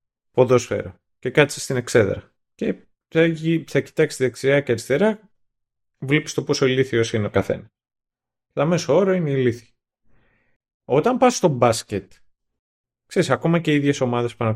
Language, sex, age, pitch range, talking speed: Greek, male, 30-49, 105-165 Hz, 155 wpm